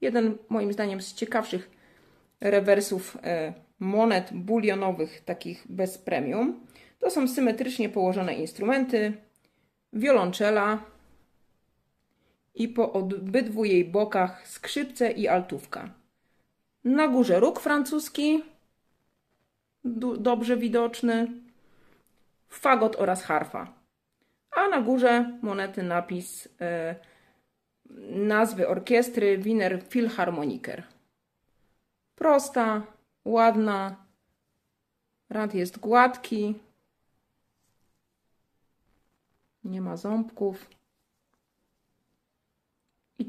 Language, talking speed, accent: Polish, 70 wpm, native